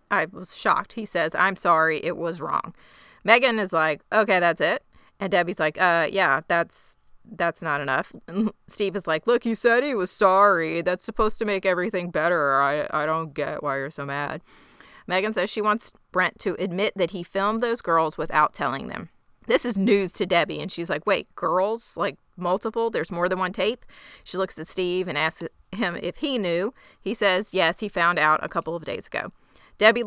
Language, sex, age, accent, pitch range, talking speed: English, female, 30-49, American, 165-215 Hz, 205 wpm